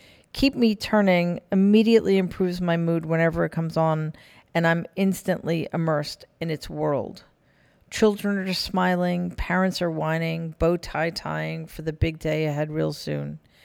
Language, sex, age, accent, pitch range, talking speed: English, female, 40-59, American, 155-180 Hz, 150 wpm